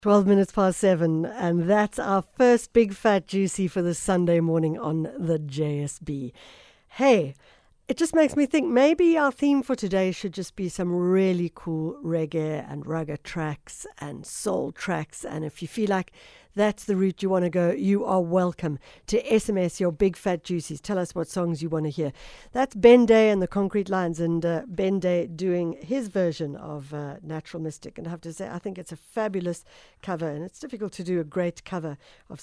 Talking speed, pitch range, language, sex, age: 200 wpm, 165-210 Hz, English, female, 60-79